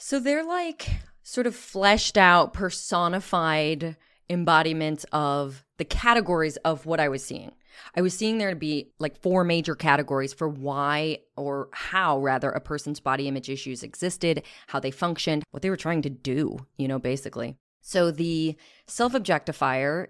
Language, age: English, 20-39